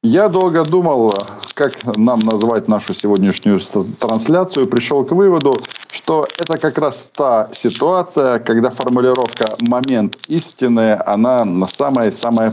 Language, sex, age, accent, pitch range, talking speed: Ukrainian, male, 50-69, native, 90-125 Hz, 115 wpm